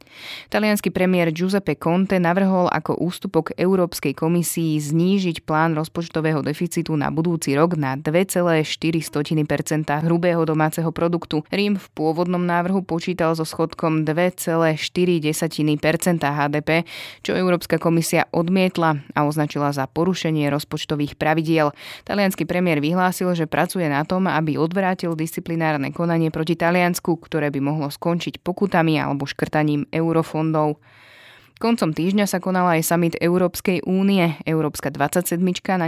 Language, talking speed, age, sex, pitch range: Slovak, 120 wpm, 20-39, female, 150-175 Hz